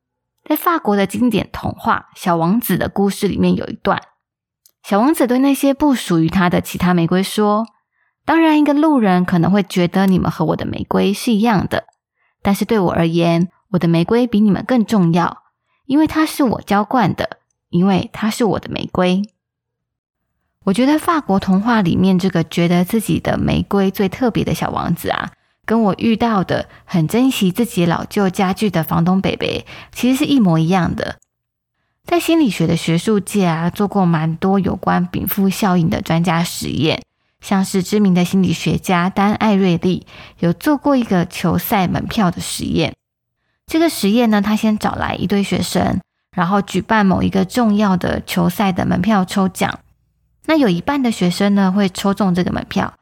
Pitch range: 180-220 Hz